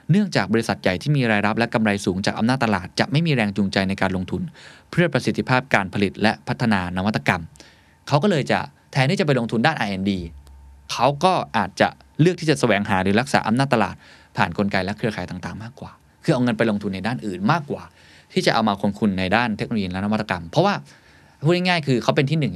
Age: 20-39